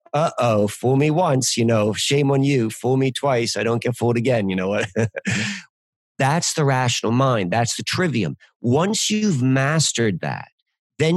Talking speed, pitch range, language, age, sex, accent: 170 wpm, 110-135 Hz, English, 40-59, male, American